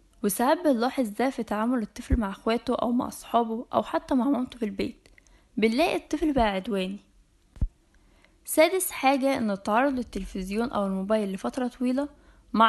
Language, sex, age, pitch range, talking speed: Arabic, female, 10-29, 210-270 Hz, 145 wpm